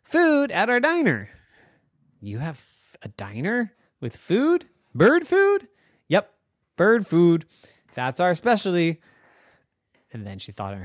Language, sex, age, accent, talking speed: English, male, 30-49, American, 135 wpm